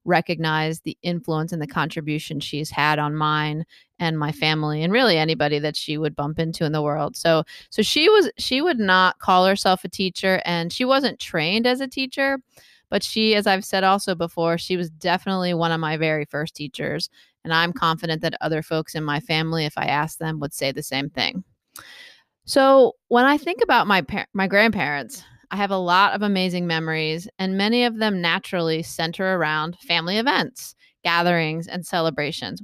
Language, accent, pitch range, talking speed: English, American, 155-190 Hz, 190 wpm